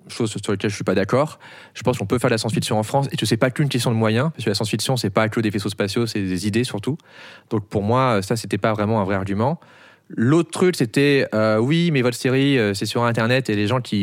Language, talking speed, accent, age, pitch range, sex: French, 290 wpm, French, 30-49, 110-140 Hz, male